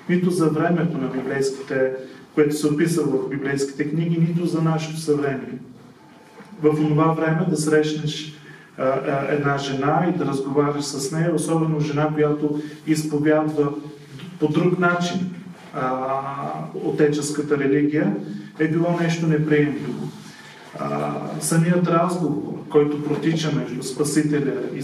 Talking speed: 115 wpm